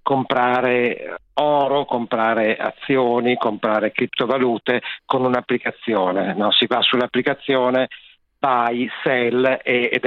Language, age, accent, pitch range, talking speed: Italian, 50-69, native, 120-140 Hz, 95 wpm